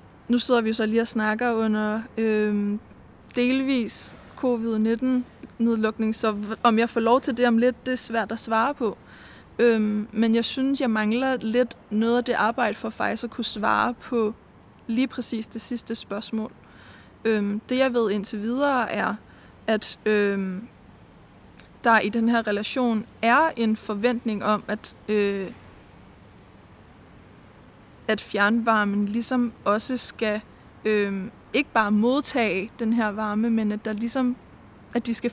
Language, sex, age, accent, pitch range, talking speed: Danish, female, 20-39, native, 210-240 Hz, 140 wpm